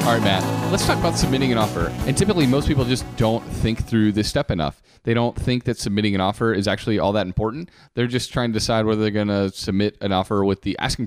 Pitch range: 100-125 Hz